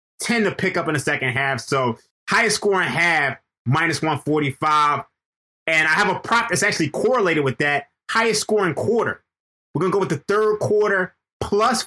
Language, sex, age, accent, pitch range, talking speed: English, male, 20-39, American, 145-185 Hz, 180 wpm